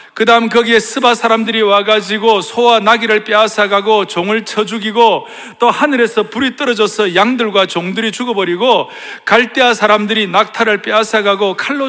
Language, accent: Korean, native